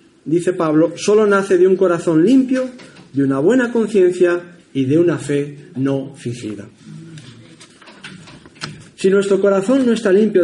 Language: Spanish